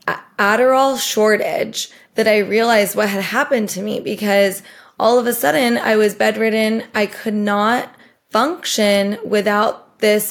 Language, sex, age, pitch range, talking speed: English, female, 20-39, 195-220 Hz, 140 wpm